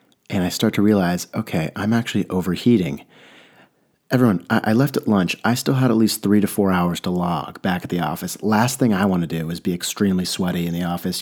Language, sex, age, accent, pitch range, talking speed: English, male, 30-49, American, 90-110 Hz, 230 wpm